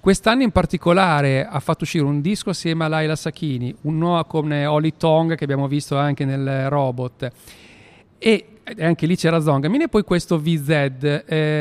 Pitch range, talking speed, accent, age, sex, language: 140-180 Hz, 170 wpm, native, 40-59, male, Italian